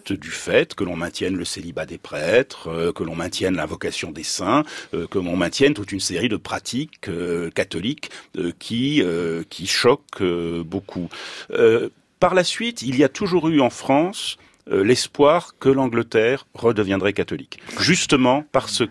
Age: 40-59